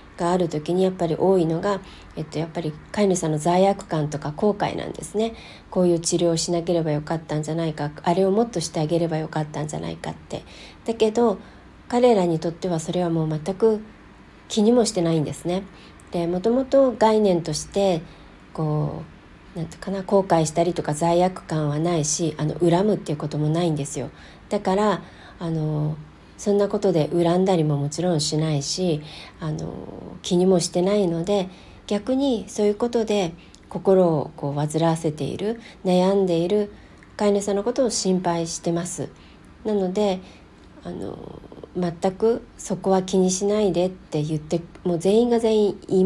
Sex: female